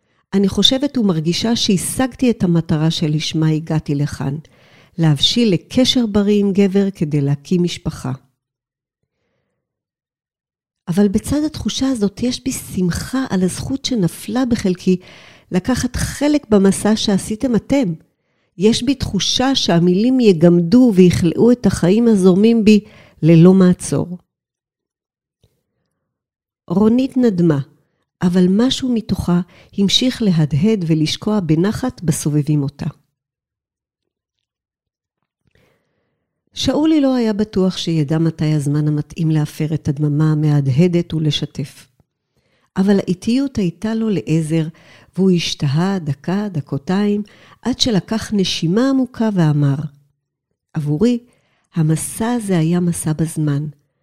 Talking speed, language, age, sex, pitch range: 100 wpm, Hebrew, 50-69, female, 155-215 Hz